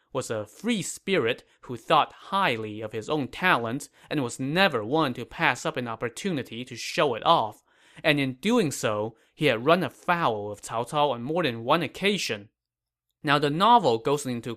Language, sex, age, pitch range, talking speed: English, male, 20-39, 115-165 Hz, 185 wpm